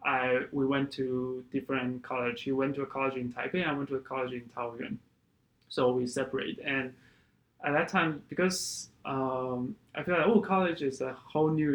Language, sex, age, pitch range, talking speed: Vietnamese, male, 20-39, 125-135 Hz, 195 wpm